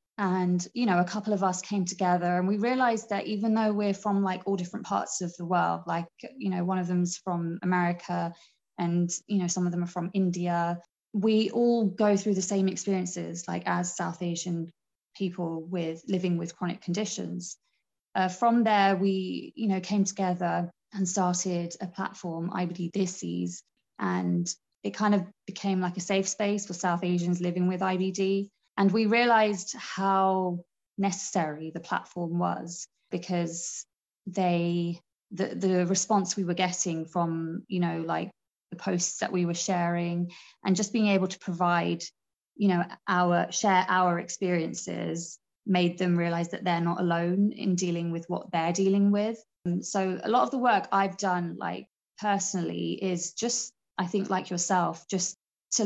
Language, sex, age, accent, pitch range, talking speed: English, female, 20-39, British, 175-195 Hz, 170 wpm